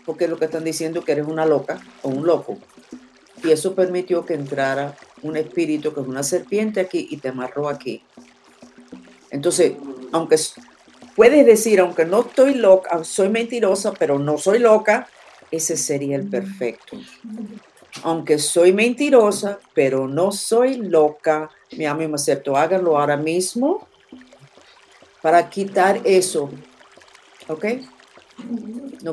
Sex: female